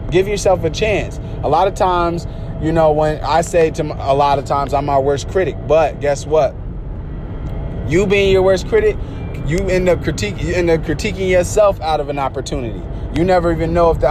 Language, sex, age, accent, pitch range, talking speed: English, male, 20-39, American, 135-165 Hz, 215 wpm